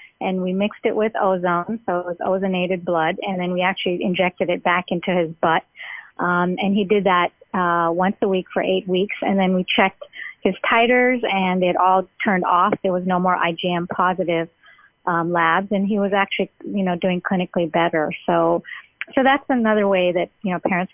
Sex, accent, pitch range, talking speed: female, American, 175-195 Hz, 200 wpm